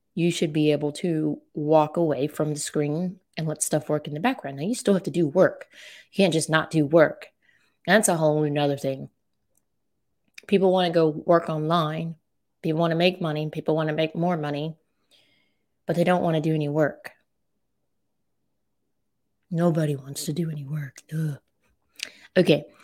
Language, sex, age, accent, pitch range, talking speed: English, female, 20-39, American, 150-170 Hz, 175 wpm